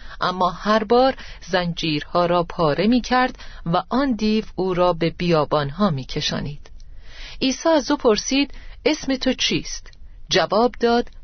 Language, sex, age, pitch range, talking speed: Persian, female, 40-59, 165-215 Hz, 140 wpm